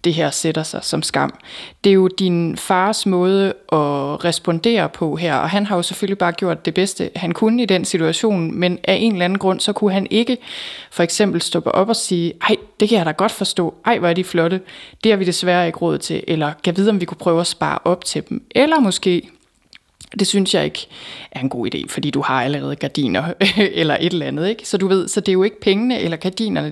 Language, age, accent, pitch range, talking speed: Danish, 20-39, native, 165-200 Hz, 245 wpm